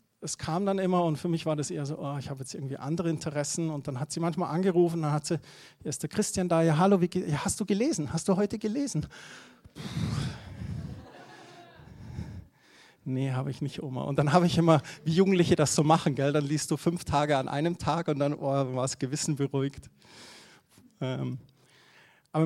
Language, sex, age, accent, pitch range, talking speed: German, male, 40-59, German, 140-170 Hz, 205 wpm